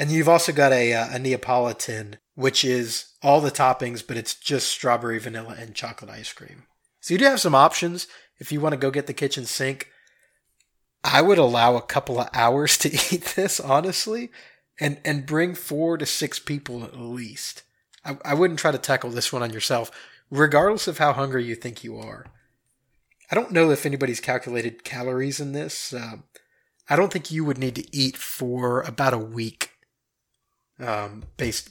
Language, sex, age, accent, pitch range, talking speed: English, male, 30-49, American, 120-150 Hz, 185 wpm